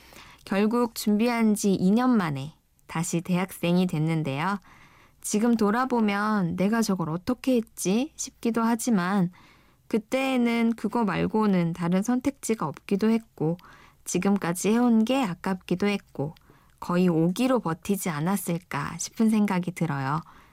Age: 20-39